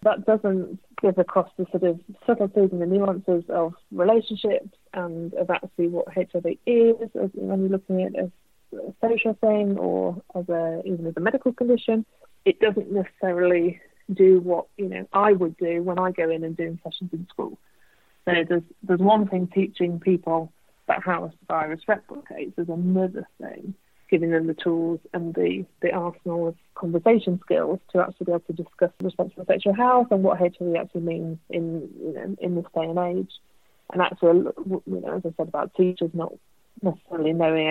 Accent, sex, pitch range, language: British, female, 170-200 Hz, English